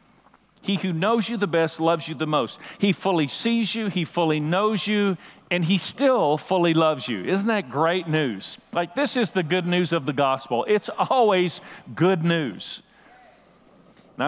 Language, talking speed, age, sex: English, 175 wpm, 50-69, male